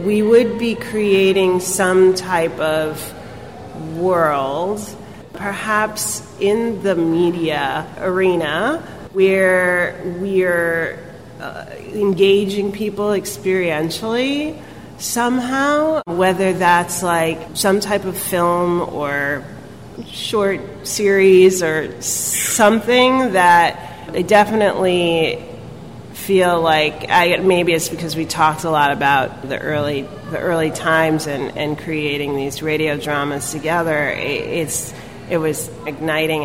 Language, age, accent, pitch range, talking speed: English, 30-49, American, 150-190 Hz, 105 wpm